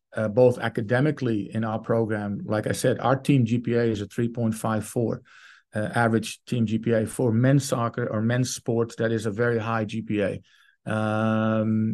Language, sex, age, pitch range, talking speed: English, male, 40-59, 110-120 Hz, 155 wpm